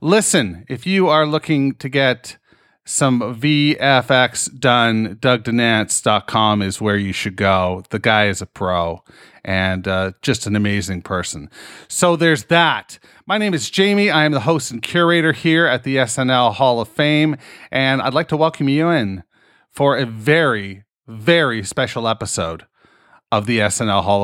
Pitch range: 110-160 Hz